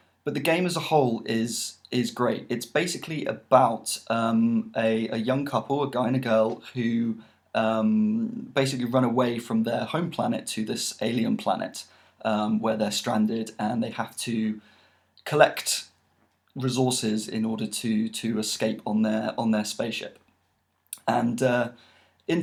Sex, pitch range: male, 110-130 Hz